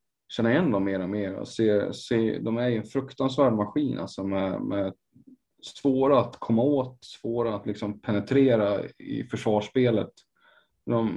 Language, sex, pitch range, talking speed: Swedish, male, 100-125 Hz, 155 wpm